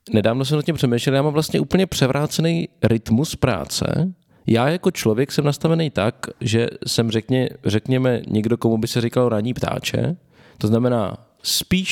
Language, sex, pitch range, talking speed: Czech, male, 115-145 Hz, 160 wpm